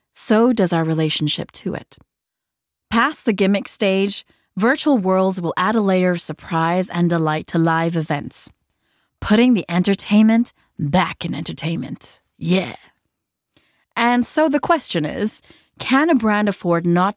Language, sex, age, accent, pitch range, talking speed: Dutch, female, 30-49, American, 165-225 Hz, 140 wpm